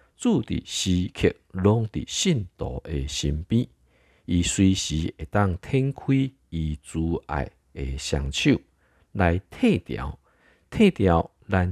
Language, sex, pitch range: Chinese, male, 75-100 Hz